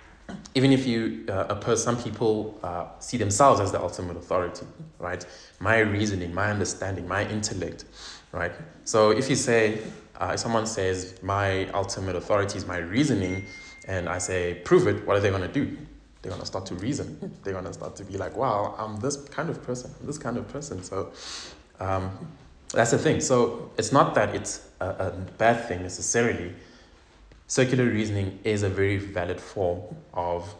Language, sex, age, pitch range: English, male, 20-39, 90-110 Hz